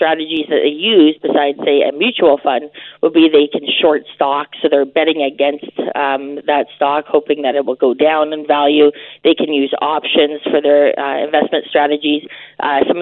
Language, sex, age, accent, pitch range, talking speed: English, female, 30-49, American, 145-185 Hz, 190 wpm